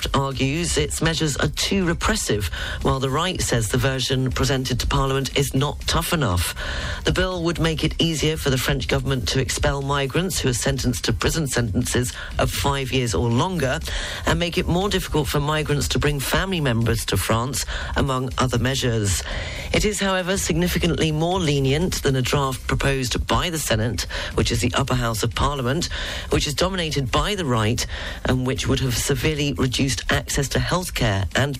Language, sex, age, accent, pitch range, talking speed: English, female, 40-59, British, 120-155 Hz, 180 wpm